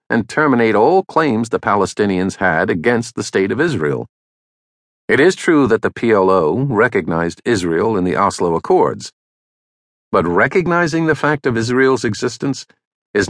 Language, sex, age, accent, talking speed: English, male, 50-69, American, 145 wpm